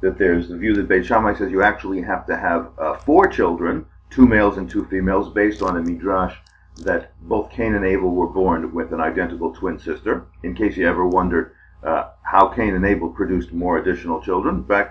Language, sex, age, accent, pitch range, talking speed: English, male, 40-59, American, 85-110 Hz, 210 wpm